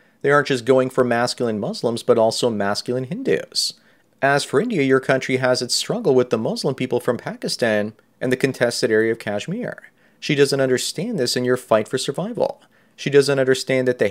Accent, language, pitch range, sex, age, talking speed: American, English, 120-140 Hz, male, 30-49, 190 wpm